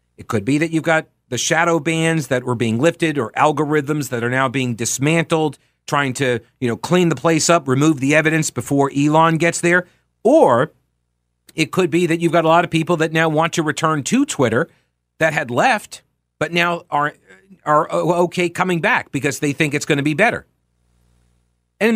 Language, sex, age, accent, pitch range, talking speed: English, male, 40-59, American, 130-175 Hz, 195 wpm